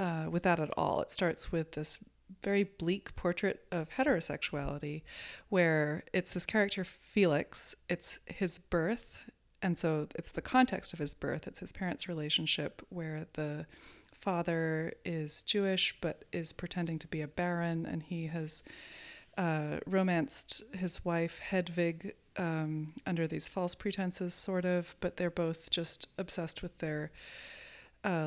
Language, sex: English, female